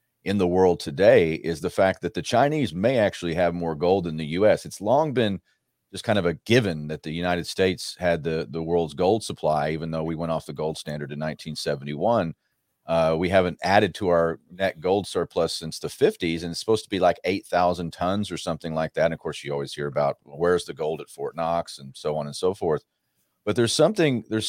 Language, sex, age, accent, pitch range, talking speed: English, male, 40-59, American, 80-100 Hz, 230 wpm